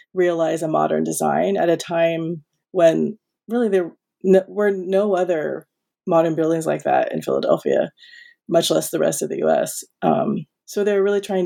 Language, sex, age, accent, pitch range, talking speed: English, female, 30-49, American, 165-200 Hz, 170 wpm